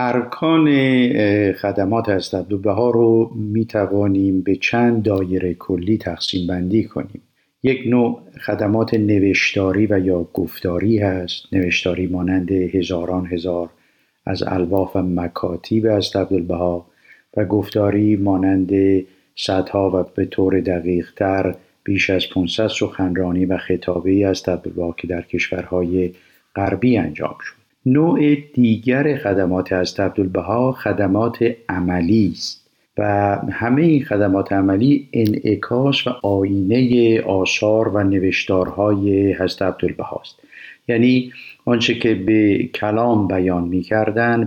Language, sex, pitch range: Persian, male, 95-115 Hz